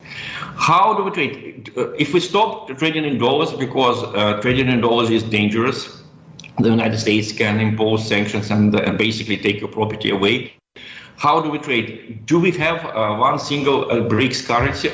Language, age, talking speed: English, 50-69, 175 wpm